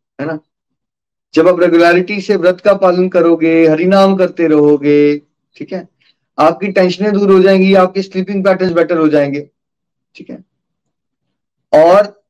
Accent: native